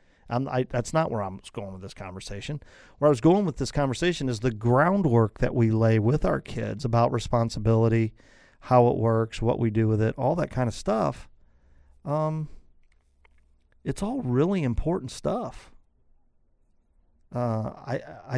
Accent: American